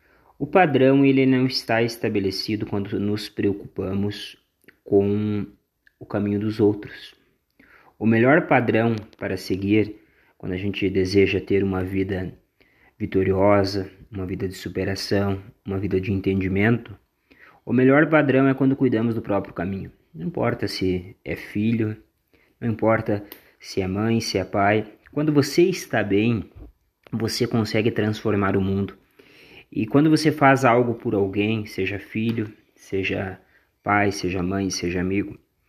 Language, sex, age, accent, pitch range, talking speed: Portuguese, male, 20-39, Brazilian, 100-140 Hz, 135 wpm